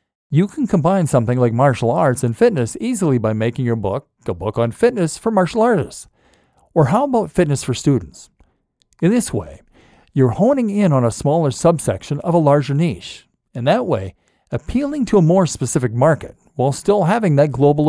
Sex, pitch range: male, 125-180 Hz